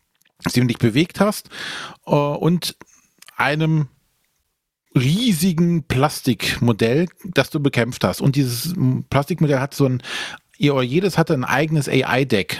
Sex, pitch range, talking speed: male, 125-160 Hz, 110 wpm